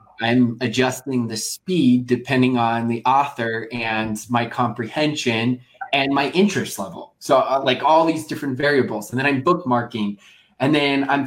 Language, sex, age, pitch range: English, male, 20-39, 125-155 Hz